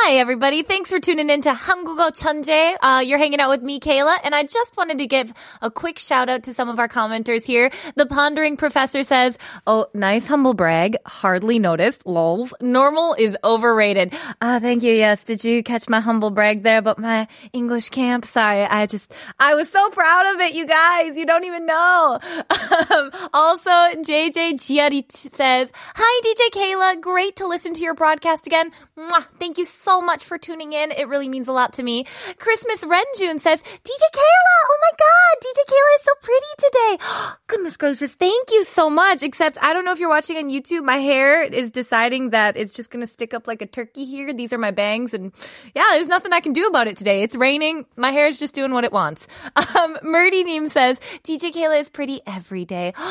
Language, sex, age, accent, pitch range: Korean, female, 20-39, American, 245-335 Hz